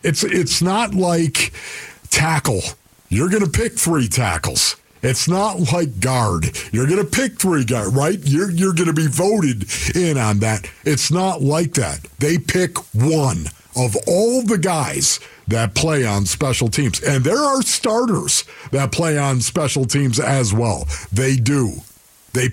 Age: 50-69